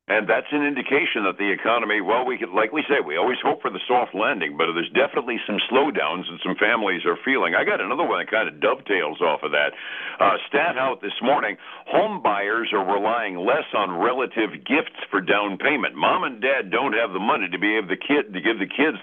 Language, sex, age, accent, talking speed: English, male, 60-79, American, 230 wpm